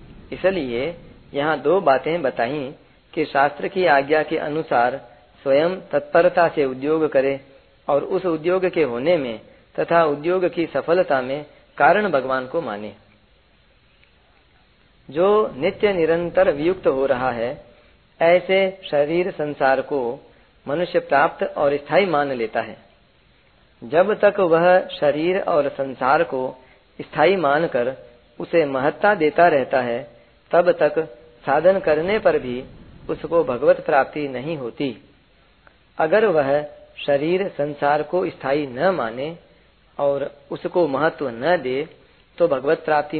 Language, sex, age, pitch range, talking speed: Hindi, female, 40-59, 135-175 Hz, 125 wpm